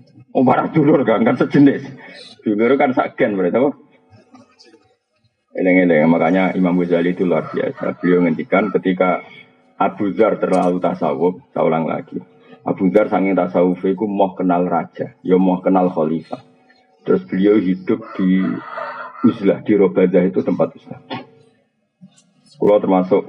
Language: Indonesian